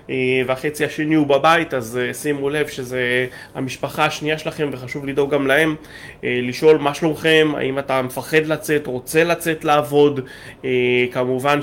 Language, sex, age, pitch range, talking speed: English, male, 20-39, 130-150 Hz, 135 wpm